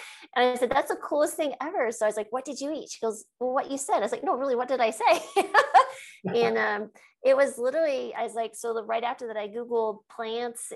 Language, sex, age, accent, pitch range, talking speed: English, female, 30-49, American, 195-240 Hz, 260 wpm